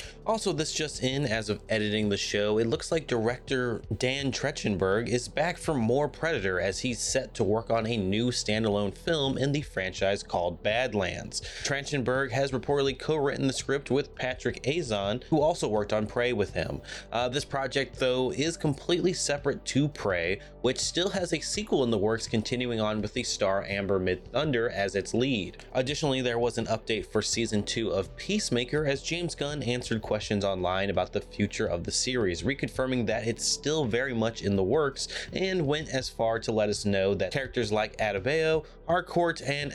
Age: 30-49